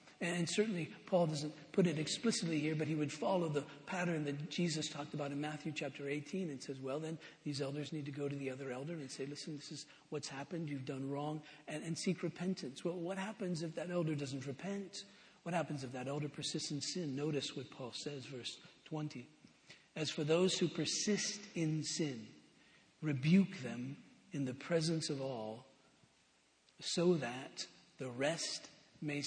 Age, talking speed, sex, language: 50-69, 185 wpm, male, English